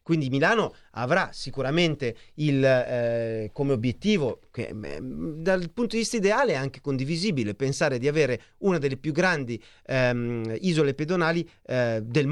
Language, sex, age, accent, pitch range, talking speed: Italian, male, 40-59, native, 125-175 Hz, 140 wpm